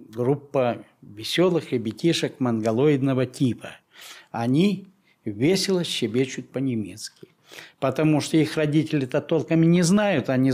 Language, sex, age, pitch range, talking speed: Russian, male, 60-79, 120-165 Hz, 100 wpm